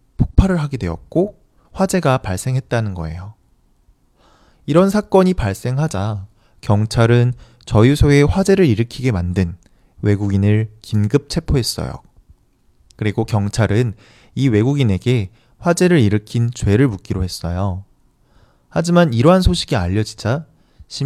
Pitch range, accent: 105-145 Hz, Korean